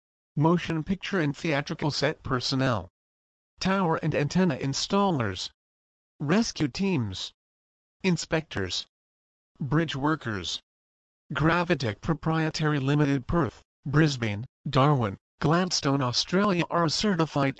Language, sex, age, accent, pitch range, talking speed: English, male, 50-69, American, 125-170 Hz, 90 wpm